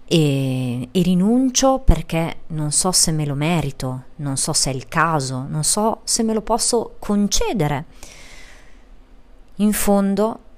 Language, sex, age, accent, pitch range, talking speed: Italian, female, 30-49, native, 130-175 Hz, 140 wpm